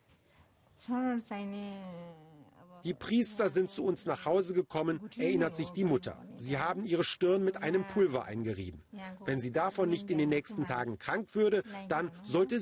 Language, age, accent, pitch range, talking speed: German, 50-69, German, 125-190 Hz, 150 wpm